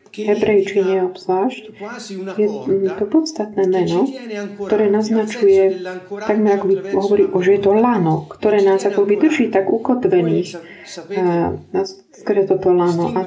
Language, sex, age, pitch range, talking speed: Slovak, female, 40-59, 185-230 Hz, 120 wpm